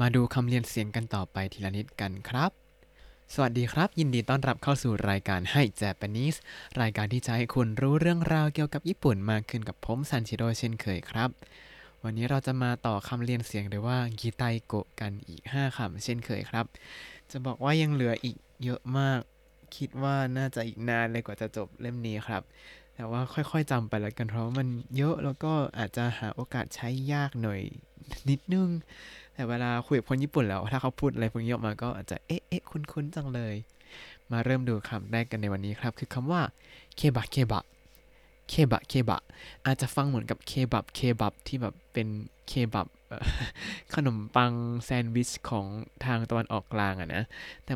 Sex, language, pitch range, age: male, Thai, 110-135 Hz, 20-39